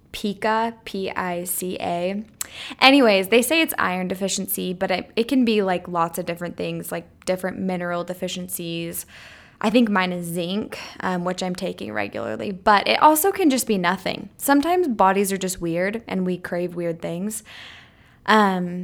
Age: 20-39